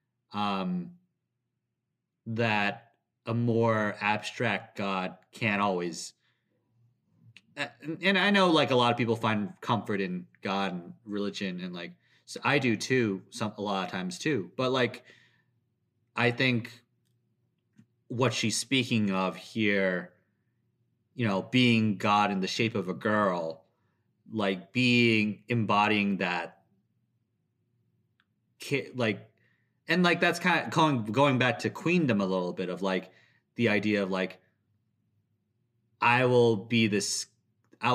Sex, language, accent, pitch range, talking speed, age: male, English, American, 100-120 Hz, 130 wpm, 30-49